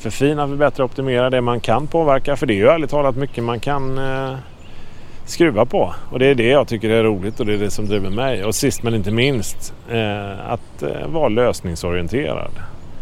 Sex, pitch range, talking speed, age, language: male, 100-120 Hz, 215 wpm, 30-49, English